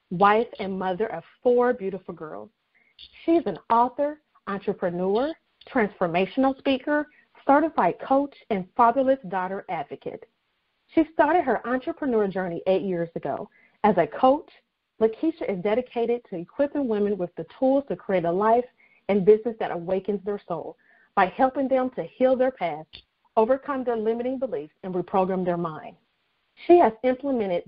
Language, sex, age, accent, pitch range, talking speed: English, female, 40-59, American, 185-255 Hz, 145 wpm